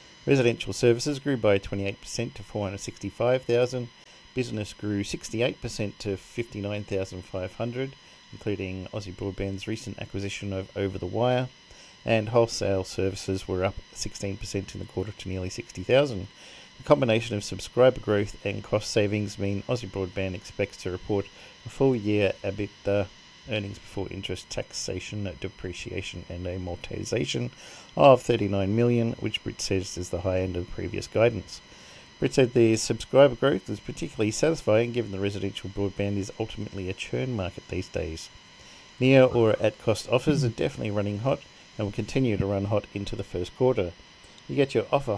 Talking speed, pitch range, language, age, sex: 145 wpm, 95-115 Hz, English, 40-59, male